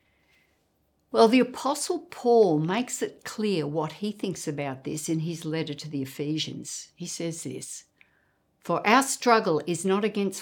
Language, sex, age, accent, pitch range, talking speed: English, female, 60-79, Australian, 155-200 Hz, 155 wpm